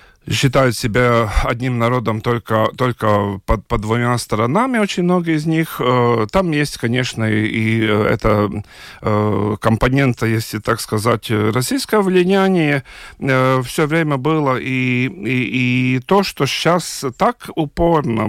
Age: 40-59